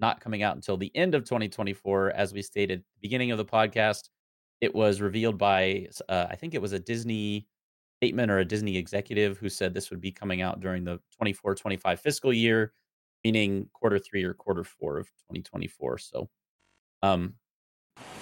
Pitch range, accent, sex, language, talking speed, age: 95-115 Hz, American, male, English, 170 wpm, 30-49